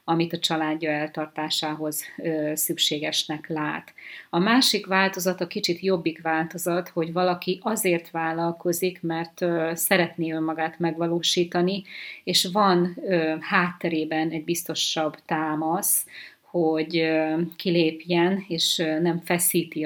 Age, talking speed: 30-49, 95 wpm